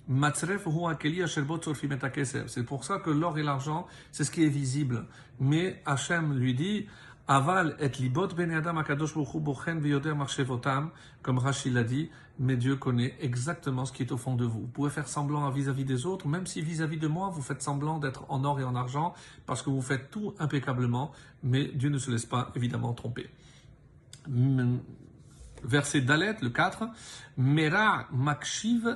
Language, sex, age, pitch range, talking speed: French, male, 50-69, 130-155 Hz, 155 wpm